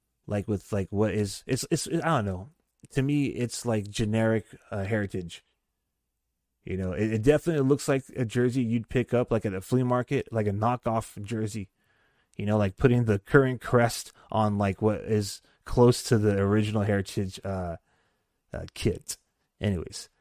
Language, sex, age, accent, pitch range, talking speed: English, male, 20-39, American, 105-130 Hz, 170 wpm